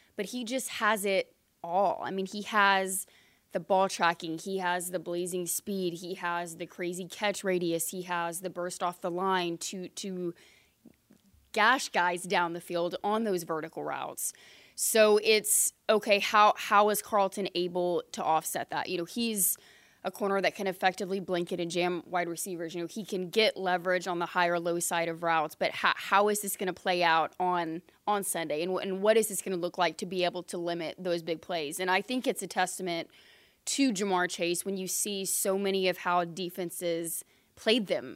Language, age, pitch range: English, 20-39, 175-200 Hz